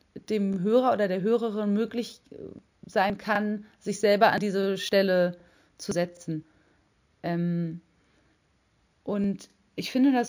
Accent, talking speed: German, 115 wpm